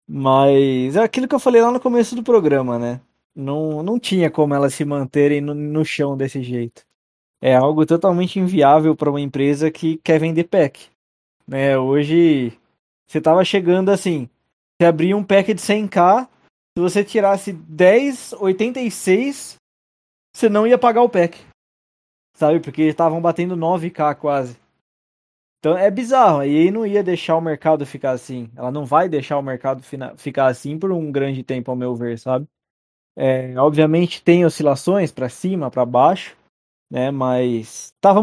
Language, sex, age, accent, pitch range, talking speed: Portuguese, male, 20-39, Brazilian, 135-175 Hz, 160 wpm